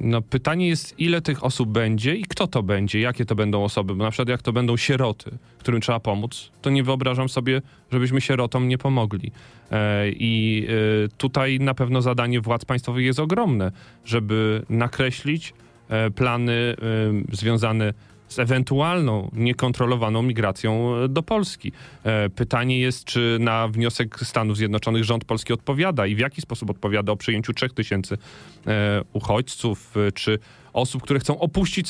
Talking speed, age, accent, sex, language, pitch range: 150 wpm, 30-49, native, male, Polish, 110-130 Hz